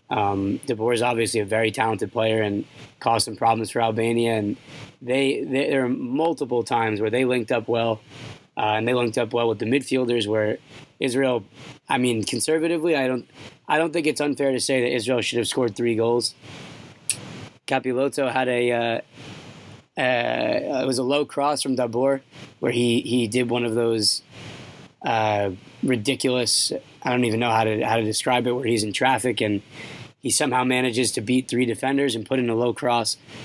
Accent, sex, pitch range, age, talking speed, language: American, male, 115-135 Hz, 20-39, 190 wpm, English